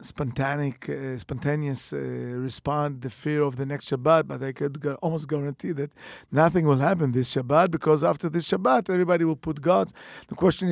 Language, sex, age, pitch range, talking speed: English, male, 50-69, 135-155 Hz, 185 wpm